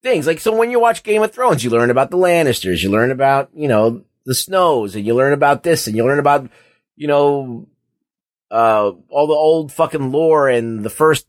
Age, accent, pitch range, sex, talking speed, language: 30-49, American, 135-175 Hz, male, 220 wpm, English